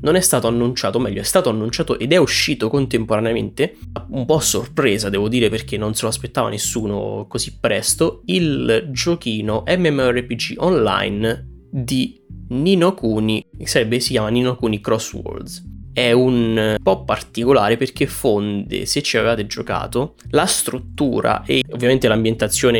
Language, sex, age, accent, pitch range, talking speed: Italian, male, 10-29, native, 105-125 Hz, 145 wpm